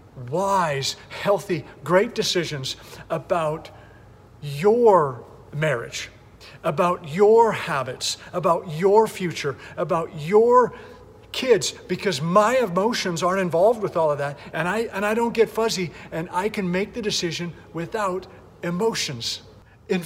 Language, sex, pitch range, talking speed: English, male, 130-205 Hz, 125 wpm